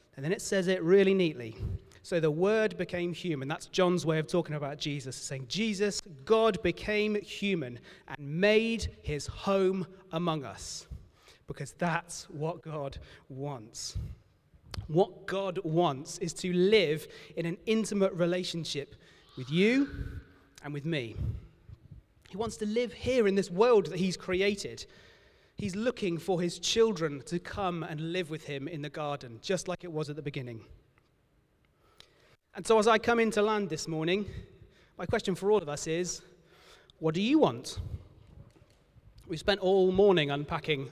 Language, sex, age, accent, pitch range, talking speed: English, male, 30-49, British, 150-200 Hz, 155 wpm